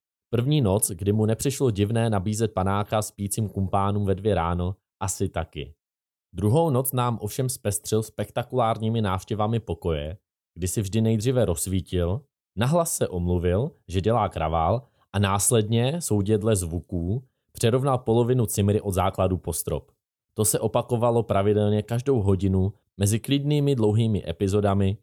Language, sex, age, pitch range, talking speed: Czech, male, 20-39, 85-110 Hz, 130 wpm